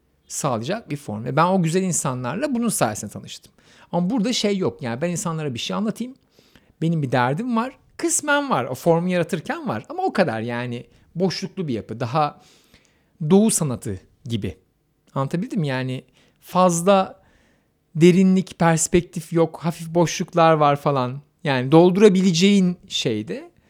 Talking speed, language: 140 wpm, Turkish